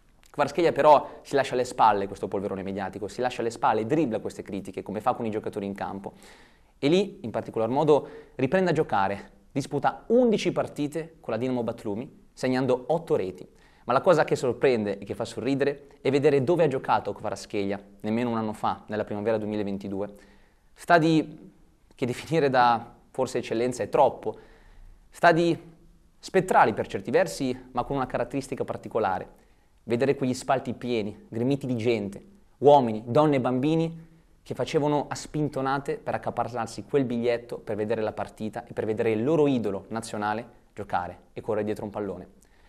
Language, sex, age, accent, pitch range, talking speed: Italian, male, 30-49, native, 105-135 Hz, 165 wpm